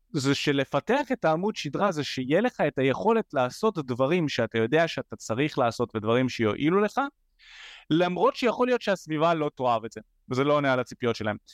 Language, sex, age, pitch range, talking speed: Hebrew, male, 30-49, 130-180 Hz, 175 wpm